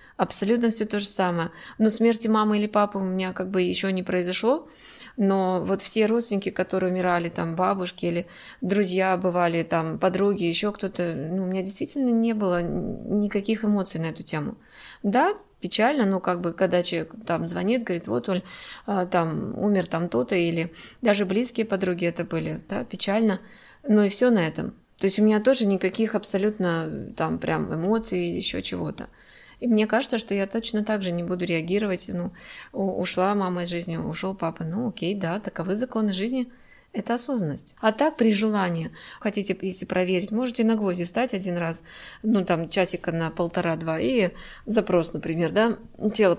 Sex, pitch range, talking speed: female, 180-220 Hz, 175 wpm